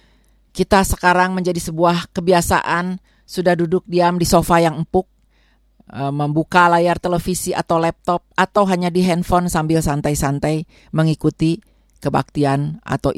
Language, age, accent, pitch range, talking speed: Indonesian, 40-59, native, 150-240 Hz, 120 wpm